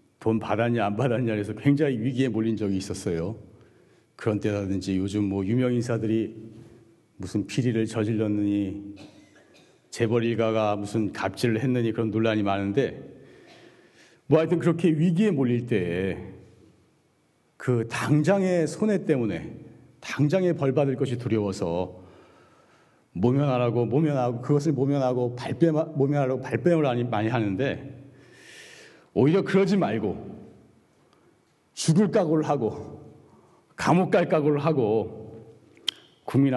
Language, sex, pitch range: Korean, male, 110-150 Hz